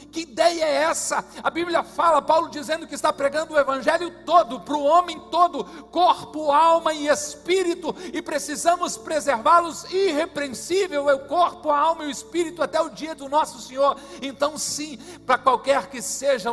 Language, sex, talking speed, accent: Portuguese, male, 165 wpm, Brazilian